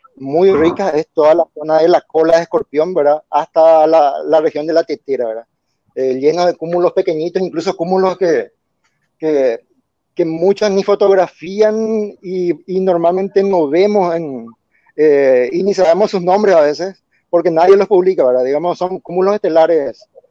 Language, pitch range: Spanish, 155-195 Hz